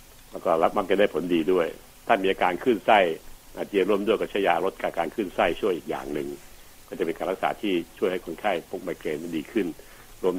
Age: 70-89